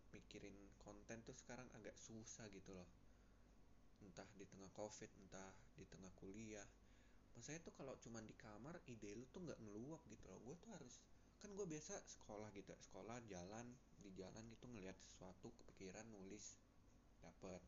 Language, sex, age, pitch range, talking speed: Indonesian, male, 20-39, 90-115 Hz, 160 wpm